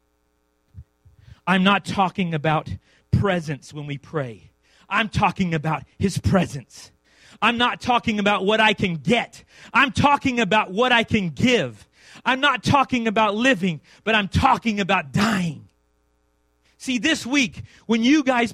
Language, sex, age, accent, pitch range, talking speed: English, male, 30-49, American, 160-265 Hz, 140 wpm